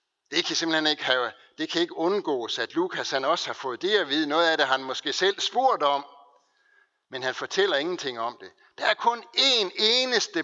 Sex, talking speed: male, 215 wpm